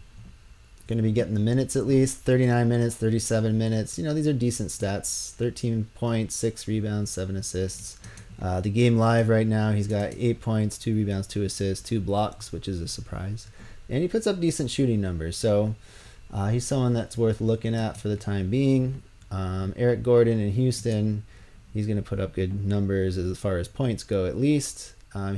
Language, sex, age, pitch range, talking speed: English, male, 30-49, 95-115 Hz, 195 wpm